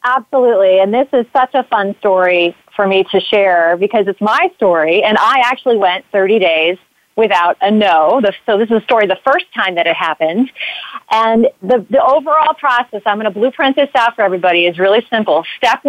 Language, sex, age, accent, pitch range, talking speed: English, female, 40-59, American, 190-255 Hz, 200 wpm